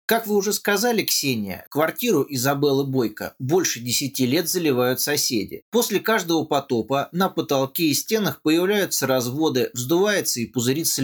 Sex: male